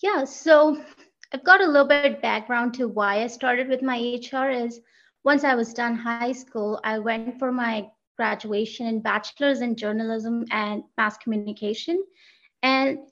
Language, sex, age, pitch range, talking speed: English, female, 20-39, 225-275 Hz, 165 wpm